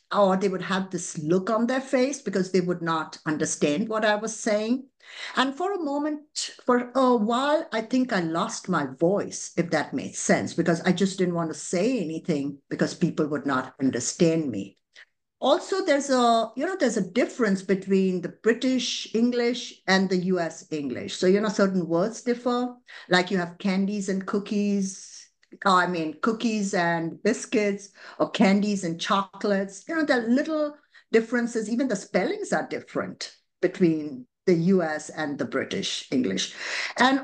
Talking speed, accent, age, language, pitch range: 170 wpm, Indian, 50-69, English, 175-240 Hz